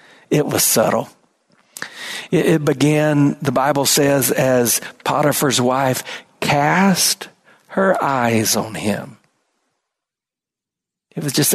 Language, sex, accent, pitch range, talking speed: English, male, American, 135-220 Hz, 100 wpm